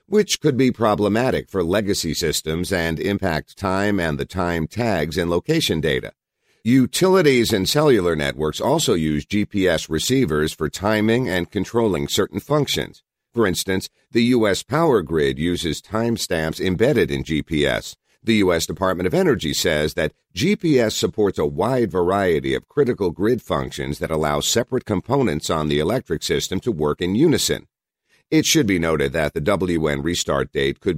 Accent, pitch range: American, 75-110 Hz